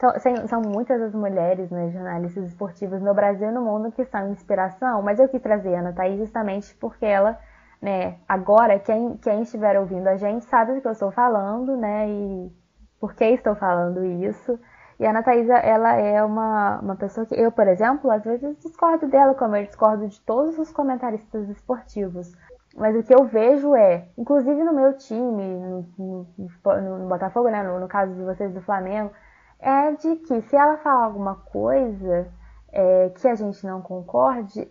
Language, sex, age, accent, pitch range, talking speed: Portuguese, female, 10-29, Brazilian, 190-250 Hz, 185 wpm